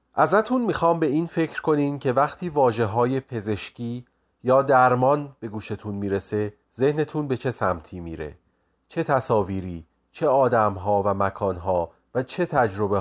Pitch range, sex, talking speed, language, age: 105-145 Hz, male, 150 wpm, Persian, 30-49